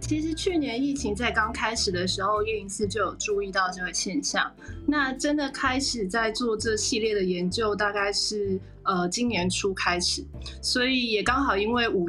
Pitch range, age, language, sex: 185-240 Hz, 30-49, Chinese, female